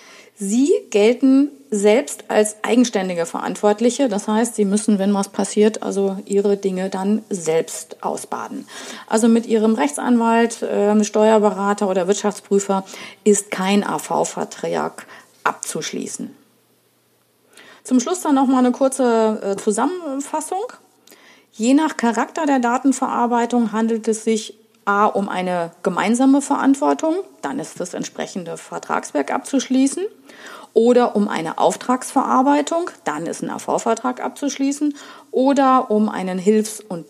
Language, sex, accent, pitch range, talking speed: German, female, German, 205-265 Hz, 115 wpm